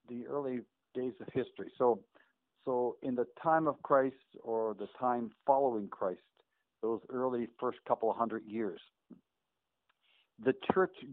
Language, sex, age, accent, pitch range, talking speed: English, male, 60-79, American, 120-155 Hz, 140 wpm